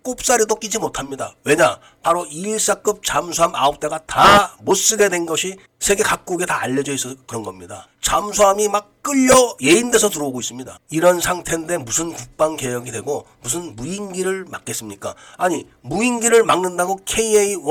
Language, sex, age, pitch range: Korean, male, 40-59, 130-185 Hz